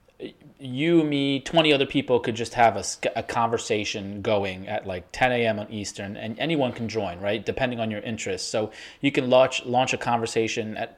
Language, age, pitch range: English, 30-49, 100-125 Hz